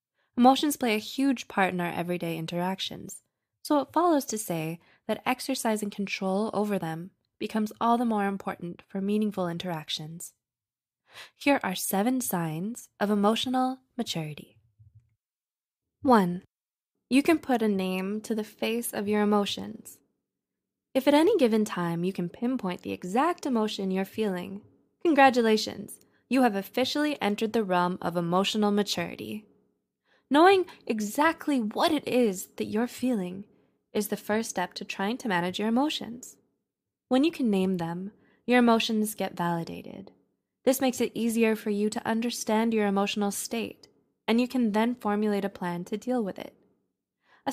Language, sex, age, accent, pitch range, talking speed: English, female, 20-39, American, 185-245 Hz, 150 wpm